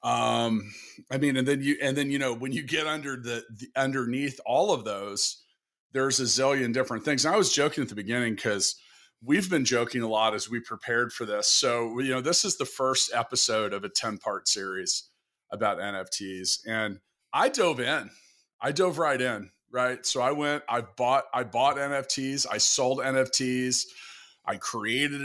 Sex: male